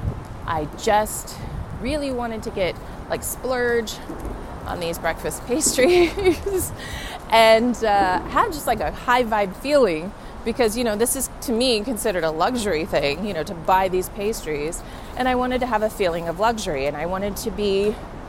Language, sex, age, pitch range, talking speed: English, female, 30-49, 180-225 Hz, 170 wpm